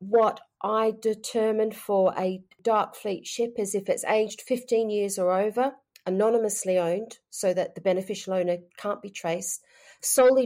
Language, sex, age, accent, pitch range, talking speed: English, female, 40-59, Australian, 175-215 Hz, 155 wpm